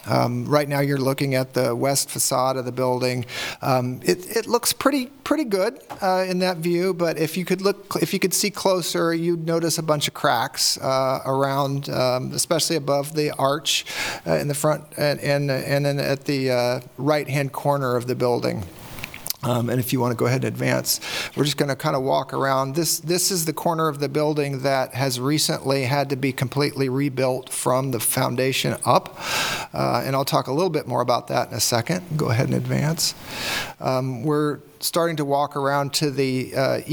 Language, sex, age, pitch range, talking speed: English, male, 40-59, 130-150 Hz, 205 wpm